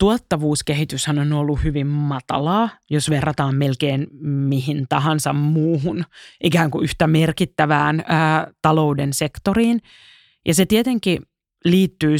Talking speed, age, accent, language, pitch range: 110 wpm, 30-49, native, Finnish, 150-180 Hz